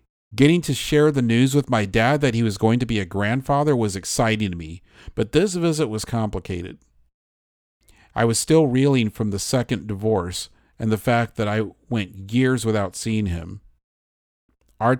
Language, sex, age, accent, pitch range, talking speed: English, male, 40-59, American, 90-120 Hz, 175 wpm